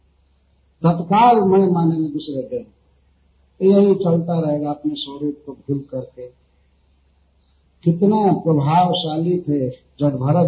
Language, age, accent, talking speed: Hindi, 50-69, native, 95 wpm